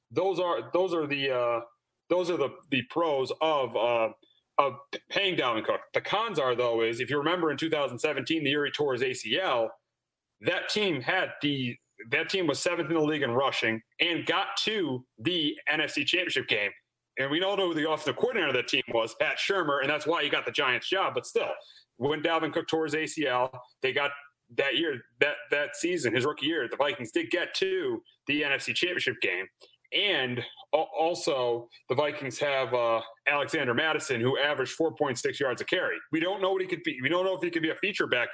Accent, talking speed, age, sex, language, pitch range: American, 205 wpm, 30-49, male, English, 135-185 Hz